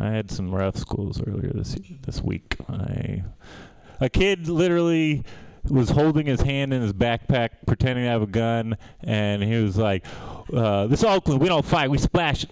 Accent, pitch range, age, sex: American, 100-135 Hz, 20-39, male